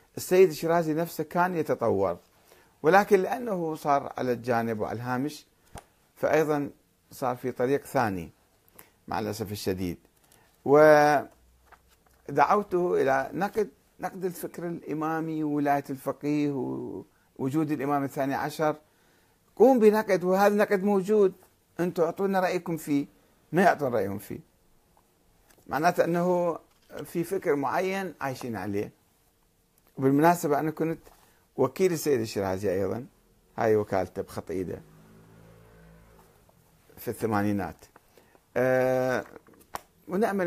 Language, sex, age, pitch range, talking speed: Arabic, male, 50-69, 115-175 Hz, 100 wpm